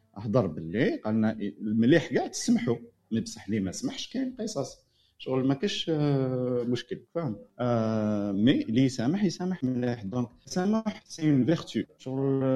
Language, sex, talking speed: Arabic, male, 135 wpm